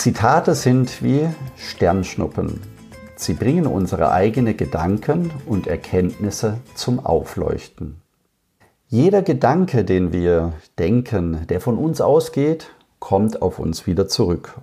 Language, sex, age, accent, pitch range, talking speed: German, male, 50-69, German, 90-120 Hz, 110 wpm